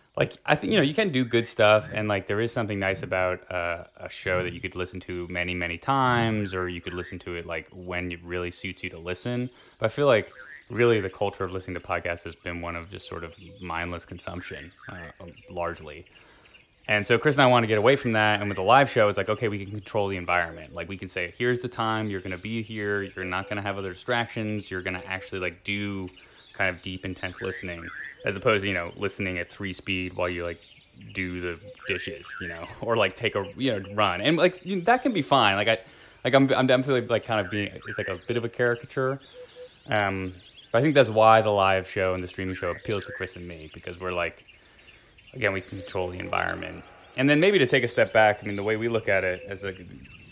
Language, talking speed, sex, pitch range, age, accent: English, 250 wpm, male, 90-115 Hz, 20-39, American